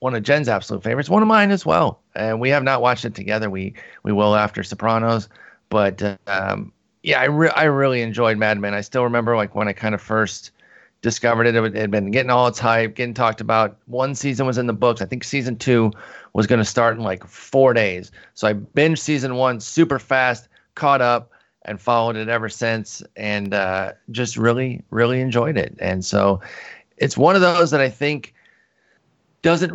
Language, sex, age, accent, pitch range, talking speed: English, male, 30-49, American, 105-130 Hz, 210 wpm